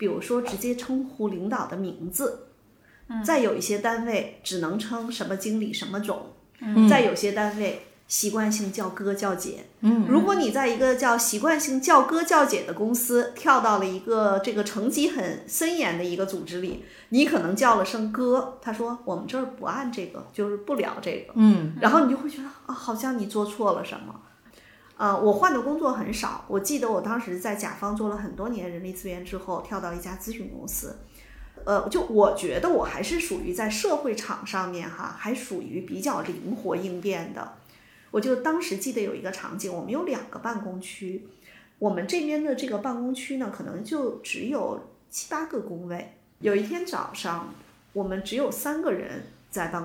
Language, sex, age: Chinese, female, 30-49